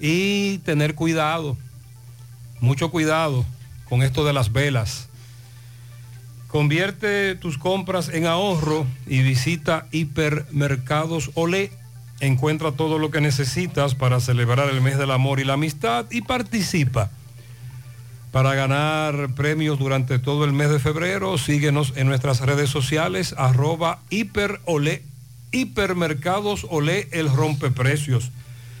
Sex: male